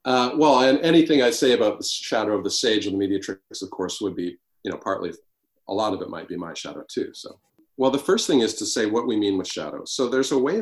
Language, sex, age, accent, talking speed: English, male, 40-59, American, 270 wpm